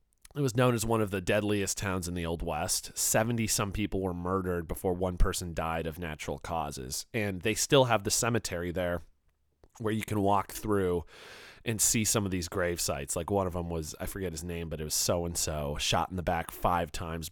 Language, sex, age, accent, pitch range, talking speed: English, male, 30-49, American, 90-120 Hz, 220 wpm